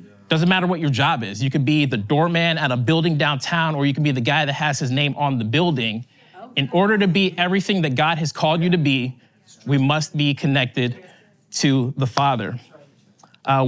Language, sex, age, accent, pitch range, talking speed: English, male, 20-39, American, 125-170 Hz, 210 wpm